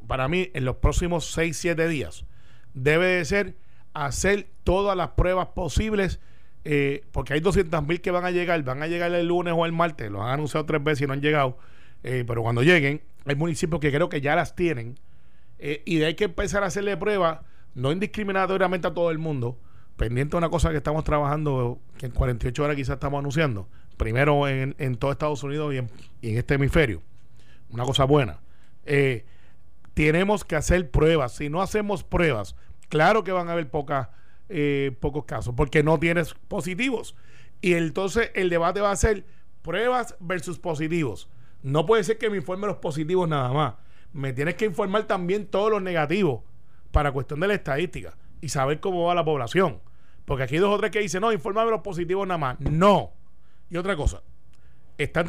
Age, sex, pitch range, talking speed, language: 30-49, male, 135-185 Hz, 190 wpm, Spanish